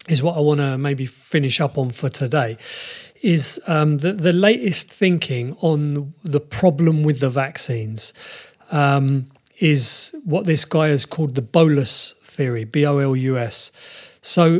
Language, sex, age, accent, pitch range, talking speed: English, male, 40-59, British, 135-170 Hz, 145 wpm